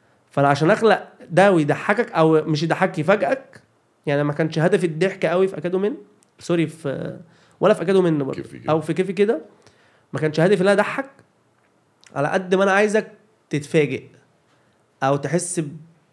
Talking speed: 155 wpm